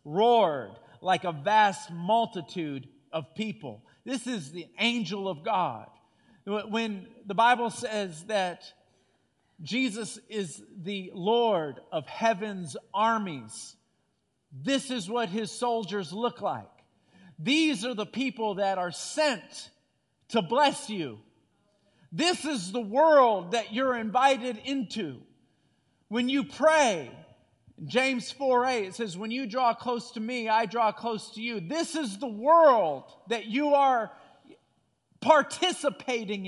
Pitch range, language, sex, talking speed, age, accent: 205-295 Hz, English, male, 125 wpm, 50-69, American